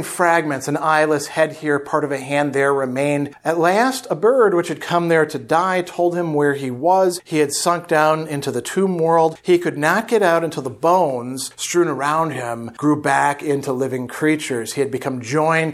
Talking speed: 205 wpm